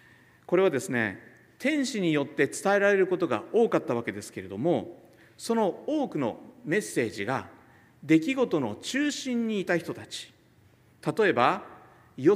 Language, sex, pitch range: Japanese, male, 145-225 Hz